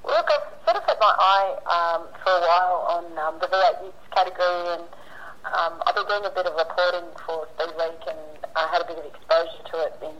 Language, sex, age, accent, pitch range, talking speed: English, female, 30-49, Australian, 165-190 Hz, 230 wpm